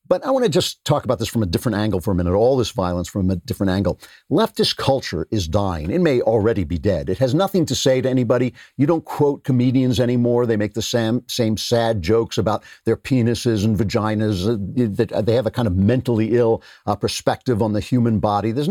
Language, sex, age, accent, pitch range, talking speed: English, male, 50-69, American, 105-130 Hz, 230 wpm